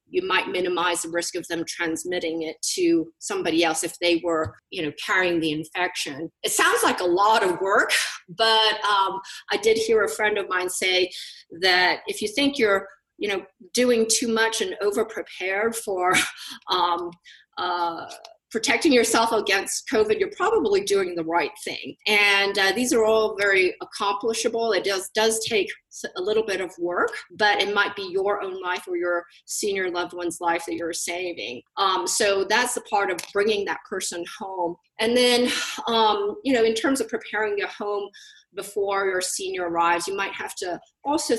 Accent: American